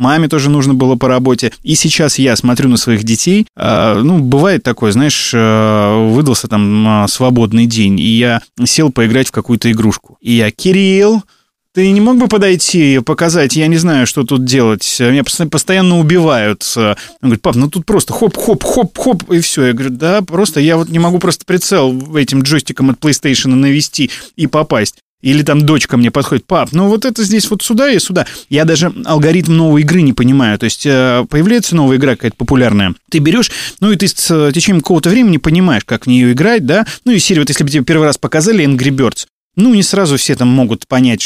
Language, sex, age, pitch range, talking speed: Russian, male, 20-39, 125-170 Hz, 195 wpm